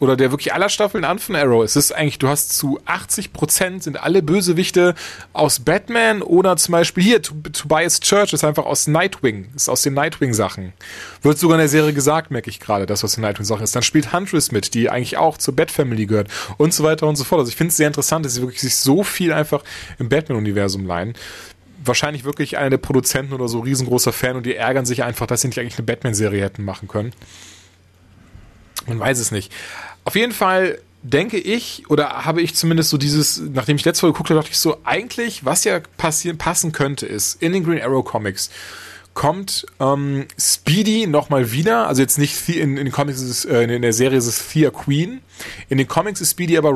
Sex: male